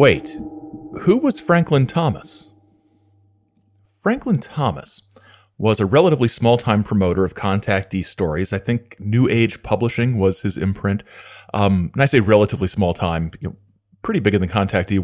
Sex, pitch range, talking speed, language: male, 95-120 Hz, 135 wpm, English